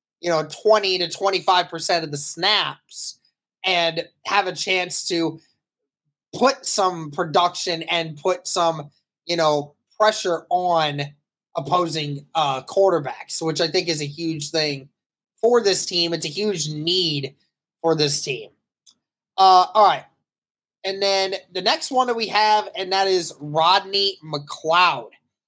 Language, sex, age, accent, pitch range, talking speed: English, male, 20-39, American, 155-195 Hz, 140 wpm